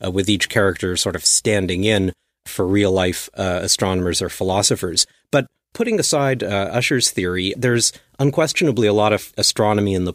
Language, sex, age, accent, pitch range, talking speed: English, male, 40-59, American, 95-110 Hz, 170 wpm